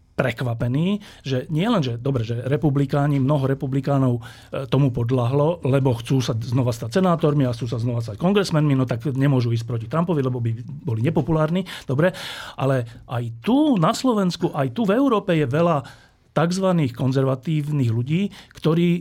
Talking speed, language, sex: 155 wpm, Slovak, male